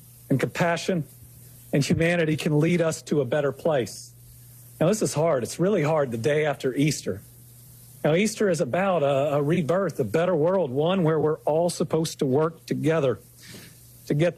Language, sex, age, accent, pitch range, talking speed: English, male, 50-69, American, 125-175 Hz, 175 wpm